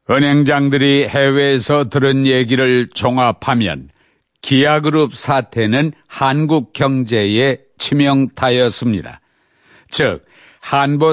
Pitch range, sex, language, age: 125-150 Hz, male, Korean, 60-79